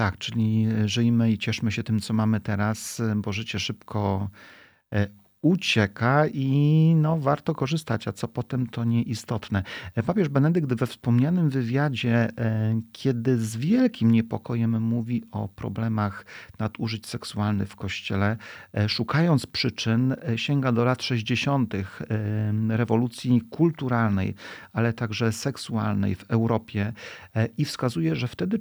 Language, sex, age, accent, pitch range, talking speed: Polish, male, 40-59, native, 105-125 Hz, 115 wpm